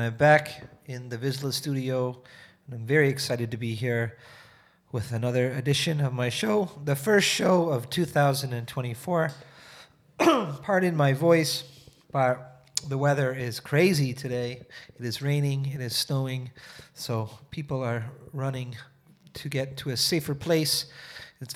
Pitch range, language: 125-155 Hz, Korean